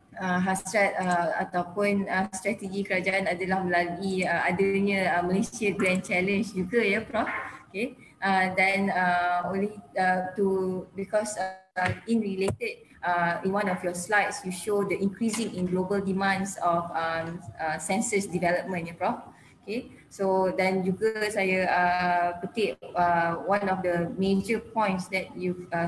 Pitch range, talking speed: 175-200 Hz, 150 wpm